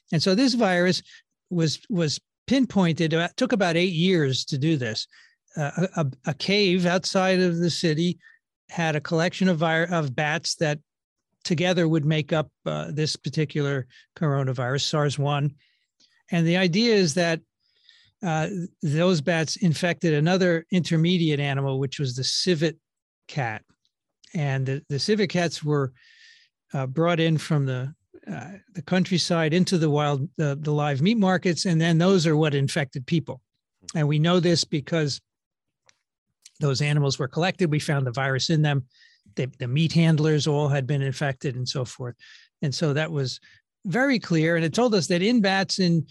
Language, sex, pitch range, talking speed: English, male, 145-185 Hz, 165 wpm